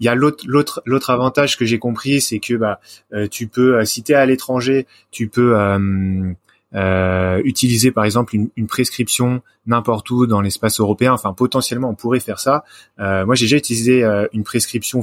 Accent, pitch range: French, 105-125 Hz